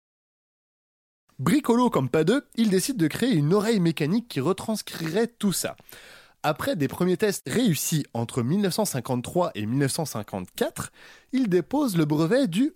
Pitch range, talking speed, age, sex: 145-240 Hz, 135 wpm, 20-39, male